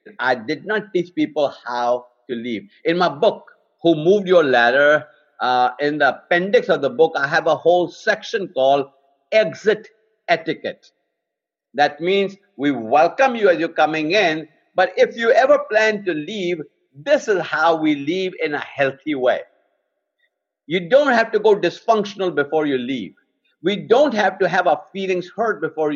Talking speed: 170 wpm